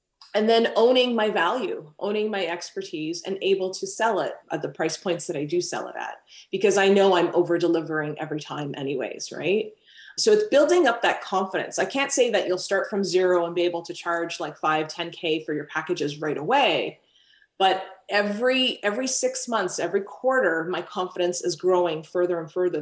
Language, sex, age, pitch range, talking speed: English, female, 30-49, 175-215 Hz, 190 wpm